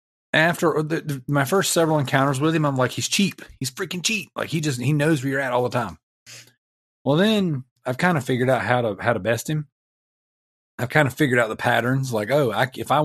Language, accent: English, American